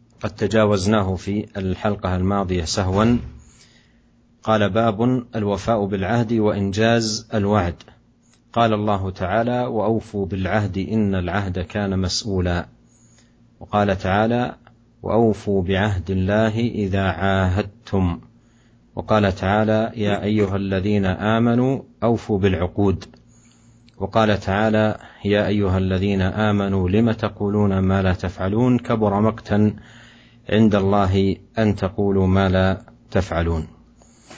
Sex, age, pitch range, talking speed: male, 40-59, 95-115 Hz, 100 wpm